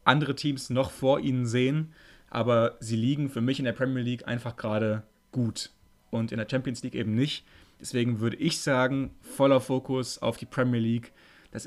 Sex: male